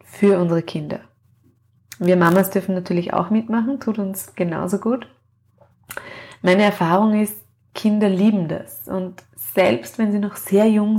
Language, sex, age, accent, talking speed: German, female, 20-39, German, 140 wpm